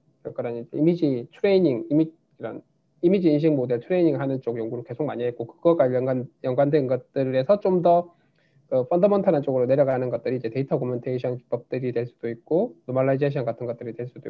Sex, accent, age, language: male, native, 20-39, Korean